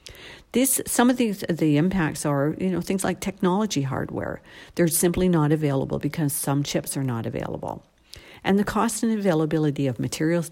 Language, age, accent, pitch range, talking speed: English, 50-69, American, 145-190 Hz, 170 wpm